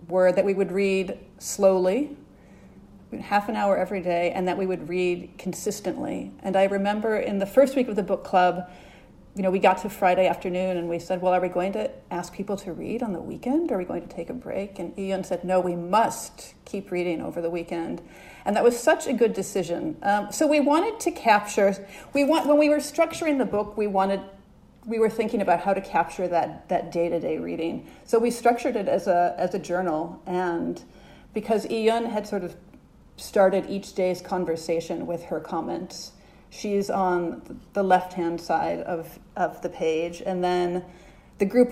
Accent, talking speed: American, 200 wpm